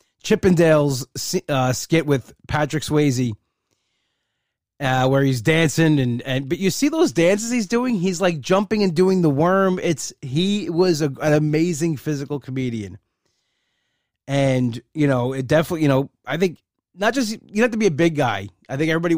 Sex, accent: male, American